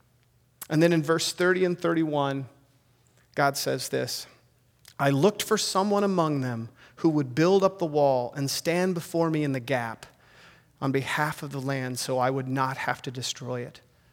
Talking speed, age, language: 180 wpm, 30-49, English